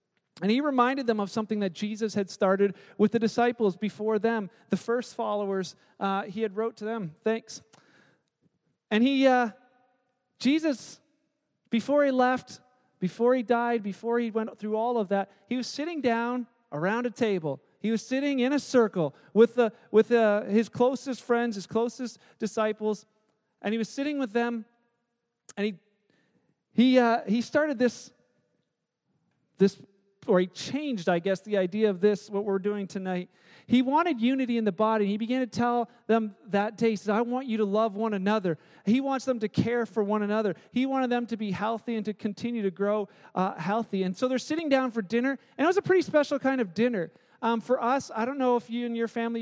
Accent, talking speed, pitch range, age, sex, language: American, 195 wpm, 205-245 Hz, 40-59, male, English